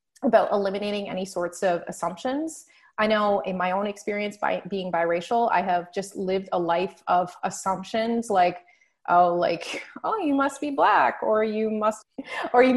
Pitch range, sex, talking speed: 185-225 Hz, female, 170 wpm